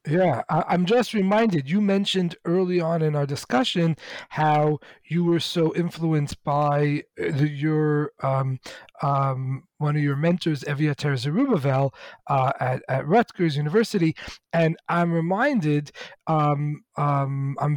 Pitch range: 145-175 Hz